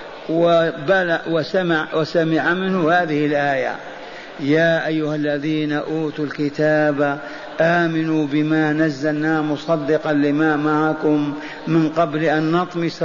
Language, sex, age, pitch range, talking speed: Arabic, male, 50-69, 155-190 Hz, 90 wpm